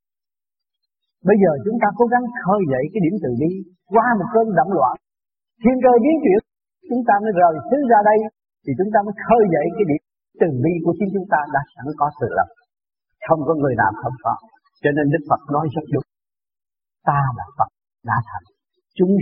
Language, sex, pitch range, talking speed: Vietnamese, male, 160-255 Hz, 205 wpm